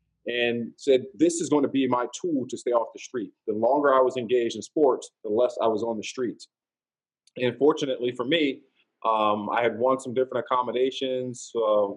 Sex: male